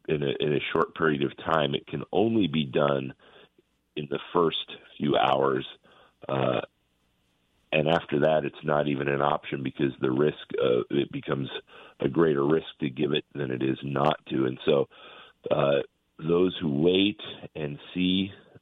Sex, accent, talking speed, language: male, American, 170 wpm, English